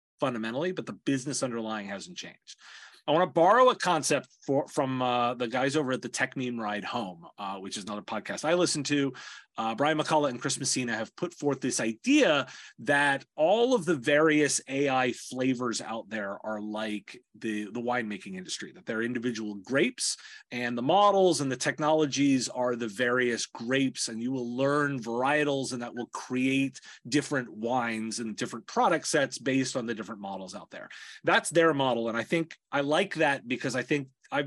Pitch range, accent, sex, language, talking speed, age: 120-150 Hz, American, male, English, 185 wpm, 30-49